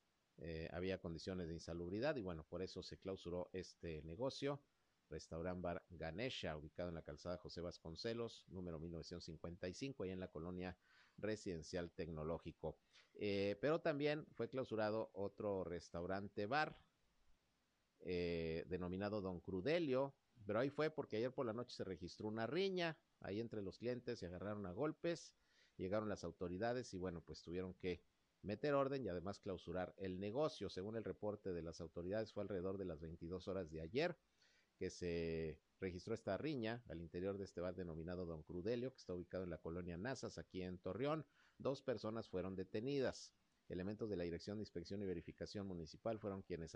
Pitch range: 85-110 Hz